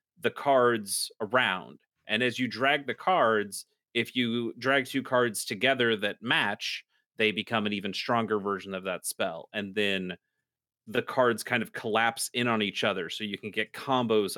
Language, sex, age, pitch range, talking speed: English, male, 30-49, 100-125 Hz, 175 wpm